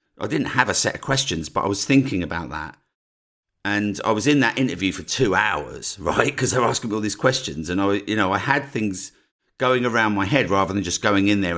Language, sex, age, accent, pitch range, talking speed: English, male, 50-69, British, 100-135 Hz, 250 wpm